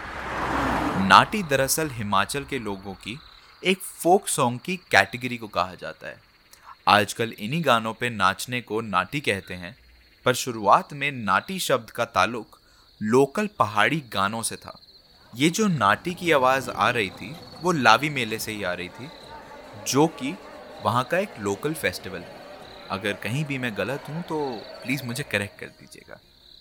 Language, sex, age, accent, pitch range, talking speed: Hindi, male, 20-39, native, 100-145 Hz, 160 wpm